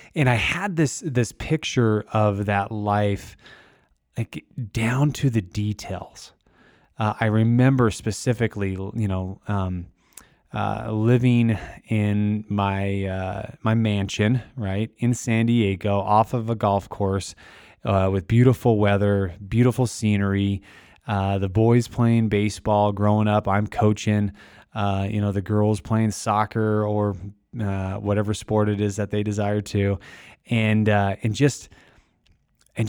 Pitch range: 100-115 Hz